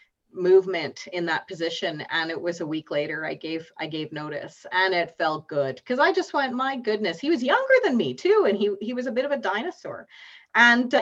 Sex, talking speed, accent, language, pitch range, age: female, 230 wpm, American, English, 175-235 Hz, 30-49